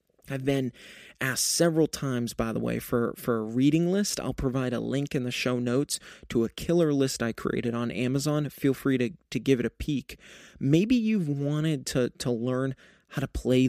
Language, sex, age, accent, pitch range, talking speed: English, male, 30-49, American, 125-160 Hz, 200 wpm